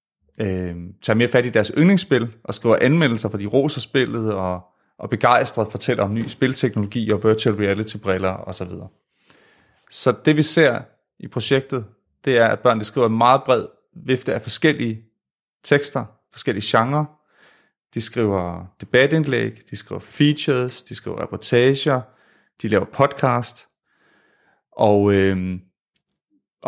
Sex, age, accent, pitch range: male, 30-49, native, 100-135 Hz